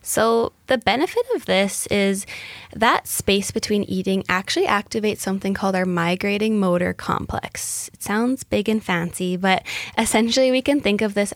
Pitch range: 185-240 Hz